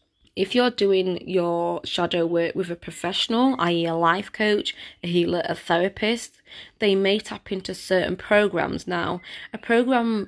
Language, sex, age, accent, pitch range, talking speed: English, female, 20-39, British, 170-200 Hz, 150 wpm